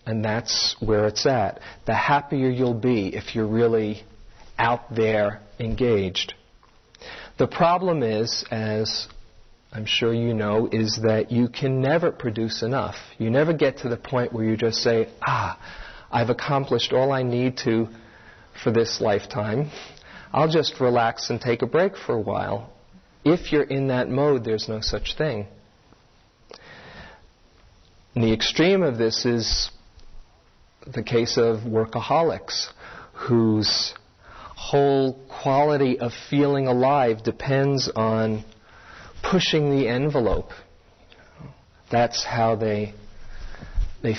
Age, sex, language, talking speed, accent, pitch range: 40-59, male, English, 125 wpm, American, 105-125 Hz